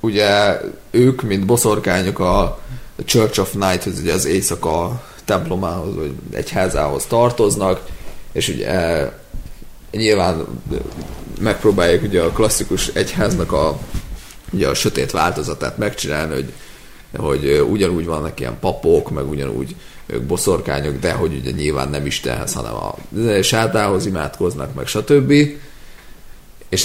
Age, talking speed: 30-49, 115 wpm